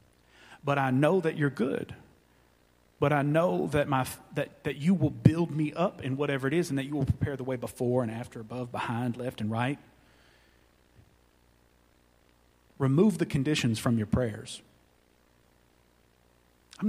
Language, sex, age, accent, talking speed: English, male, 40-59, American, 155 wpm